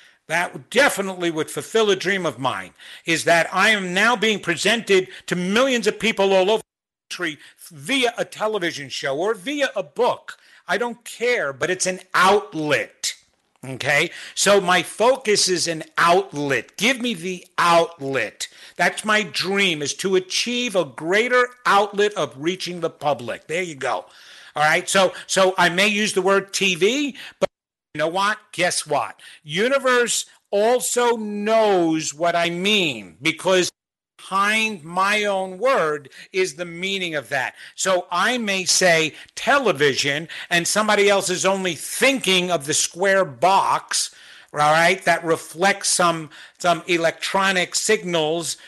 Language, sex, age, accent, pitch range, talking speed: English, male, 50-69, American, 165-210 Hz, 145 wpm